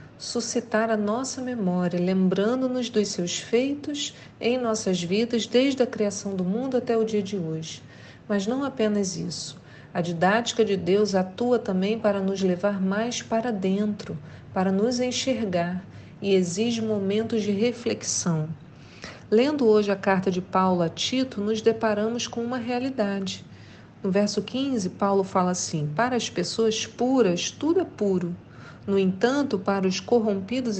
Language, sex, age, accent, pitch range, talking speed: Portuguese, female, 40-59, Brazilian, 185-240 Hz, 150 wpm